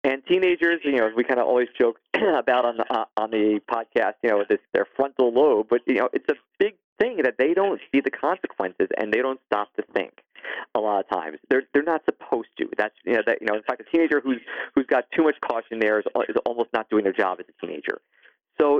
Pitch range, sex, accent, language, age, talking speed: 105-150 Hz, male, American, English, 40-59, 250 wpm